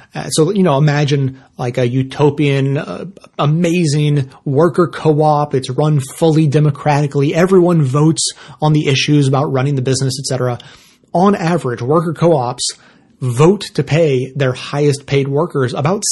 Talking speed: 145 wpm